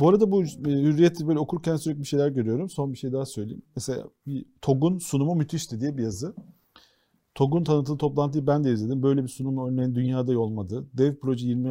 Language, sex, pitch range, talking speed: Turkish, male, 125-160 Hz, 200 wpm